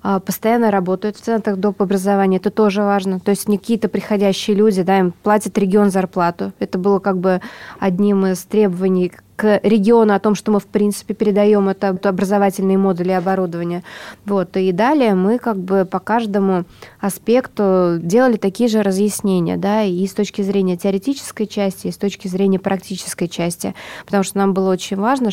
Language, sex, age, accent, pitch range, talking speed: Russian, female, 20-39, native, 185-210 Hz, 170 wpm